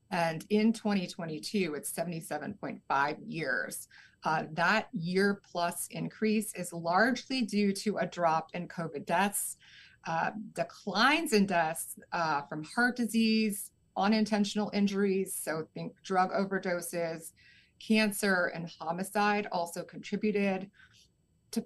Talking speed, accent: 110 wpm, American